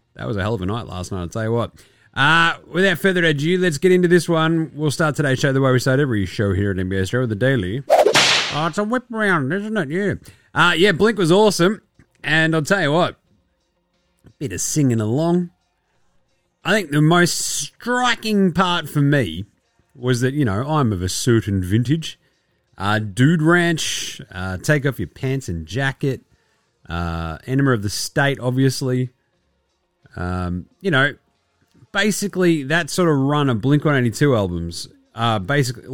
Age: 30-49